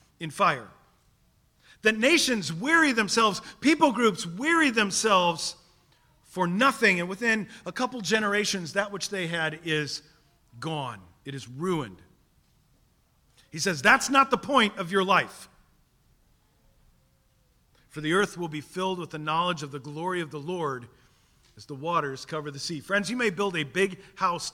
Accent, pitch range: American, 140-195 Hz